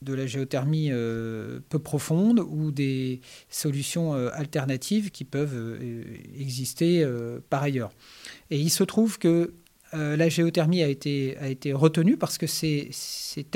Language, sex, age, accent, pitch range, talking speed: French, male, 40-59, French, 140-175 Hz, 145 wpm